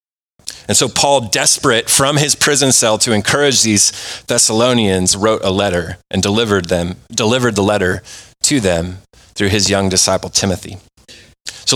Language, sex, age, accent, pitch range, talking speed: English, male, 30-49, American, 105-140 Hz, 150 wpm